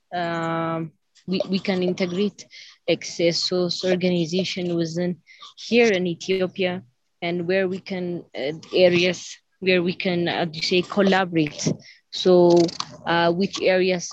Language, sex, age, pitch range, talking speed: English, female, 20-39, 175-190 Hz, 125 wpm